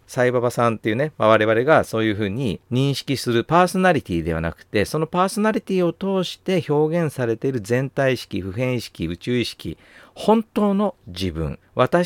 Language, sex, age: Japanese, male, 50-69